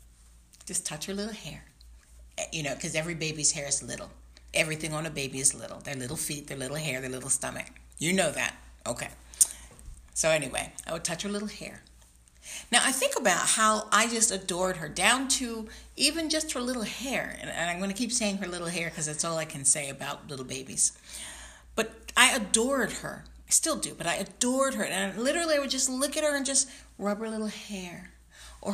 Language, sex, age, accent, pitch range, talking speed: English, female, 50-69, American, 150-240 Hz, 210 wpm